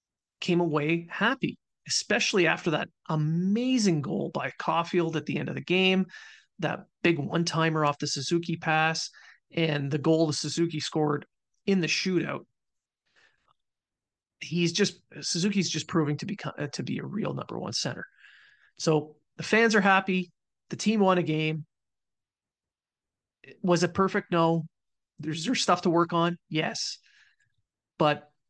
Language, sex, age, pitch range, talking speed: English, male, 30-49, 150-185 Hz, 145 wpm